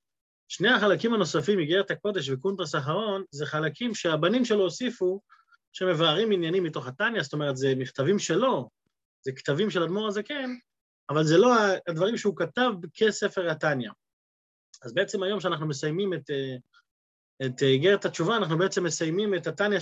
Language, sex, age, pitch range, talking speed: Hebrew, male, 30-49, 160-215 Hz, 145 wpm